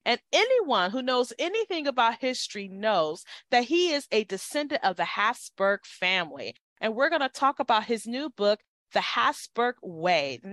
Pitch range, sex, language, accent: 195-290 Hz, female, English, American